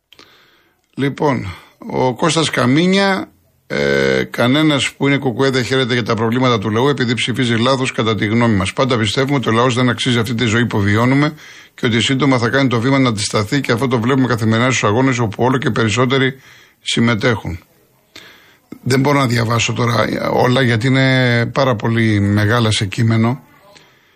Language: Greek